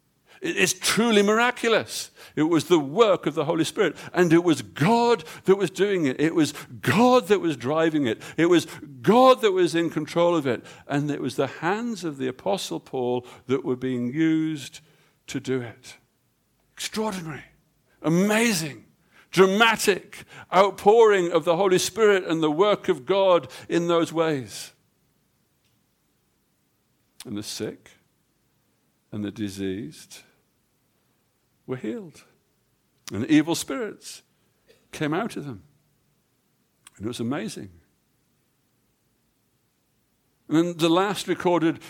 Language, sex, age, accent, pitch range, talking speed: English, male, 60-79, British, 140-180 Hz, 130 wpm